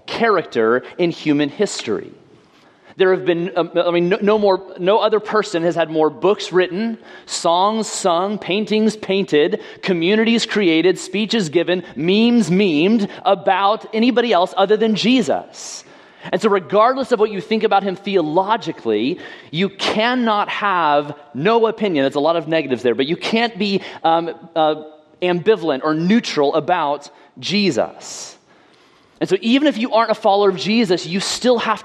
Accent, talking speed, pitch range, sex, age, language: American, 155 wpm, 170-215 Hz, male, 30-49, English